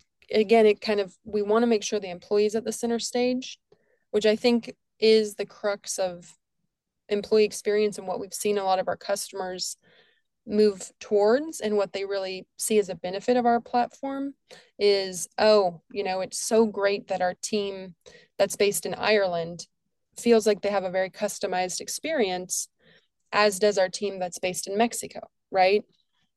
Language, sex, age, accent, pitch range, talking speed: English, female, 20-39, American, 185-225 Hz, 175 wpm